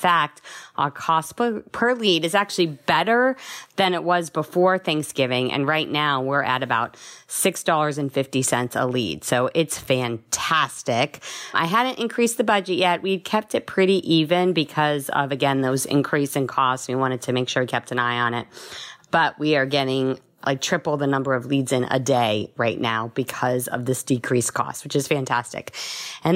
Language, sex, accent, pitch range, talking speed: English, female, American, 140-210 Hz, 180 wpm